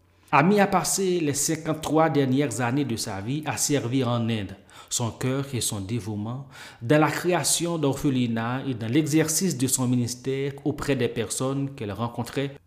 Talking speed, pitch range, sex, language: 160 wpm, 115-150 Hz, male, French